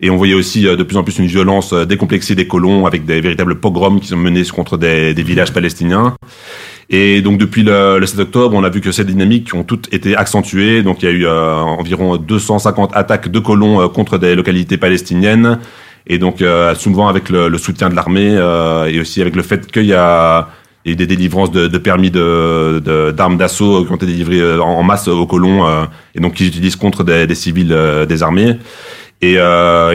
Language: French